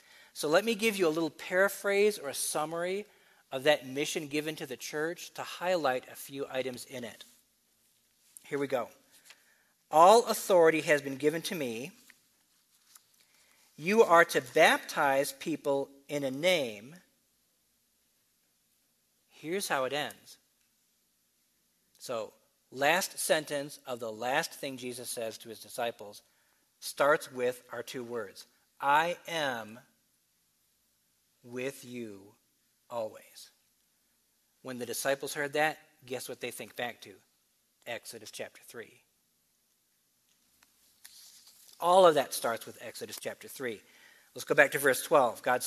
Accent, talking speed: American, 130 wpm